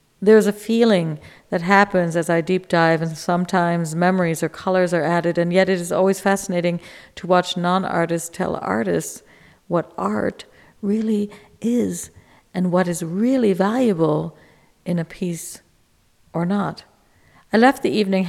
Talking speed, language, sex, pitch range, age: 150 wpm, English, female, 170-195 Hz, 50-69